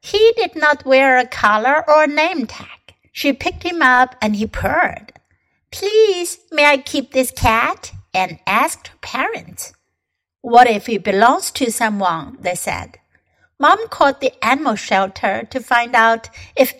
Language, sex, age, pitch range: Chinese, female, 60-79, 210-295 Hz